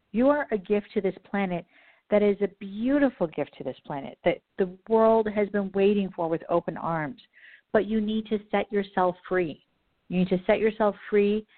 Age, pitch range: 50-69, 175-215 Hz